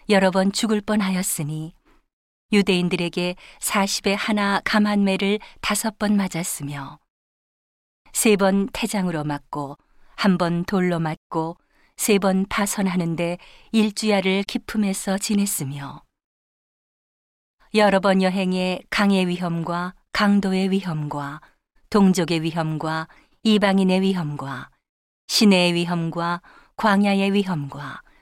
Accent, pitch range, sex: native, 165-200 Hz, female